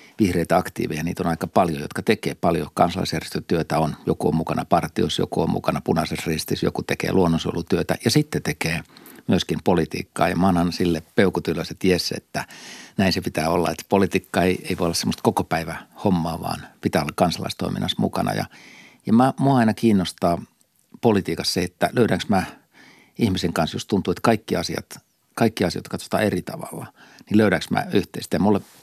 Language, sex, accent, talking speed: Finnish, male, native, 170 wpm